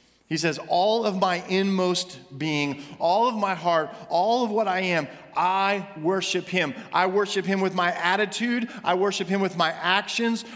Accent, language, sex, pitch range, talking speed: American, English, male, 170-225 Hz, 175 wpm